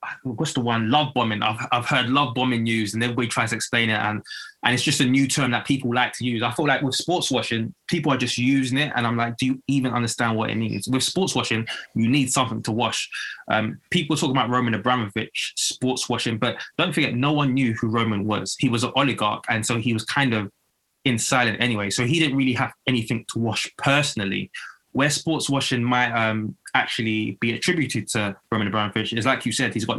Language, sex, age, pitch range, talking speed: English, male, 20-39, 115-135 Hz, 230 wpm